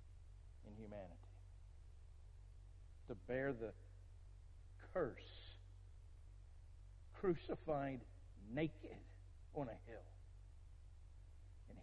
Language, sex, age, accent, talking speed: English, male, 50-69, American, 55 wpm